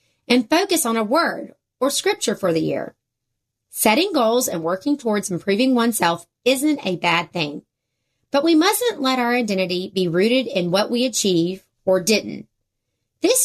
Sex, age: female, 30-49